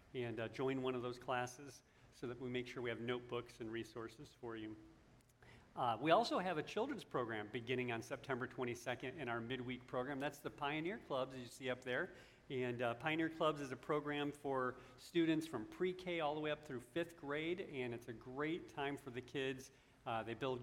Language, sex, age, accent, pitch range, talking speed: English, male, 40-59, American, 125-150 Hz, 210 wpm